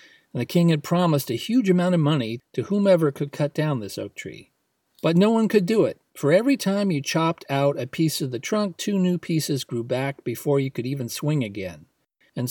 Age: 40-59